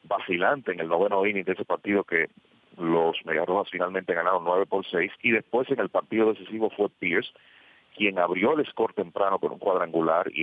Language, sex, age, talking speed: English, male, 40-59, 190 wpm